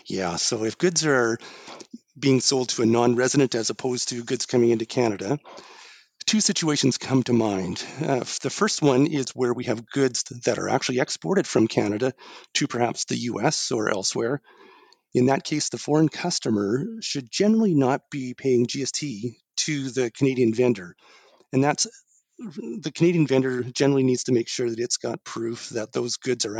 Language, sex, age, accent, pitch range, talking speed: English, male, 40-59, American, 120-150 Hz, 175 wpm